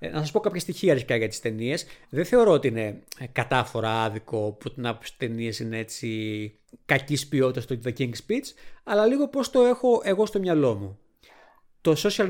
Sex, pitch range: male, 120-190 Hz